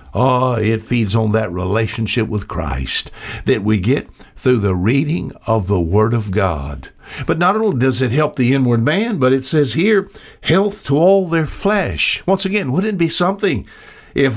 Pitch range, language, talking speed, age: 105-135 Hz, English, 185 wpm, 60-79